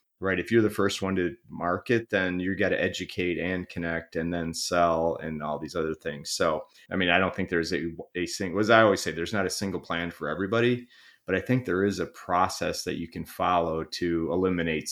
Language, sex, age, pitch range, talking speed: English, male, 30-49, 85-100 Hz, 230 wpm